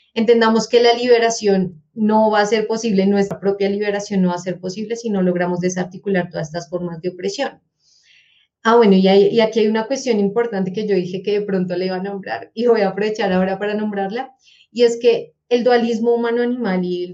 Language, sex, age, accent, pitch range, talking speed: Spanish, female, 30-49, Colombian, 185-225 Hz, 205 wpm